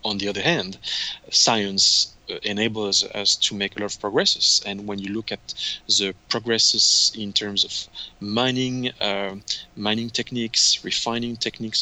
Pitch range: 105-125 Hz